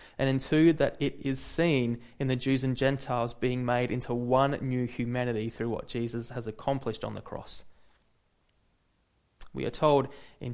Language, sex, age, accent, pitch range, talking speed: English, male, 20-39, Australian, 120-150 Hz, 170 wpm